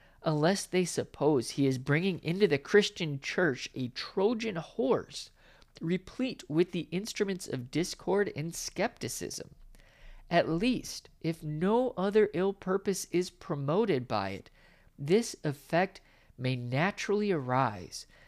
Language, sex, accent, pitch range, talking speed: English, male, American, 135-200 Hz, 120 wpm